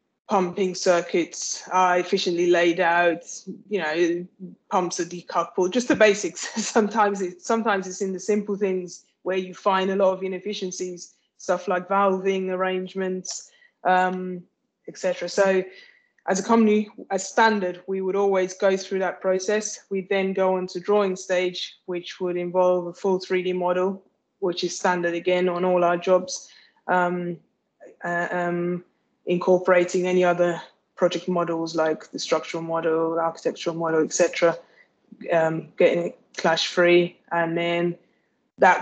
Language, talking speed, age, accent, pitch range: English, 135 wpm, 20-39, British, 175-195 Hz